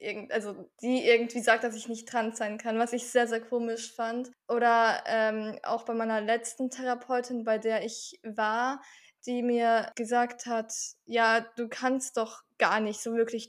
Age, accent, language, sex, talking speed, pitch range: 10-29, German, German, female, 175 wpm, 220-240 Hz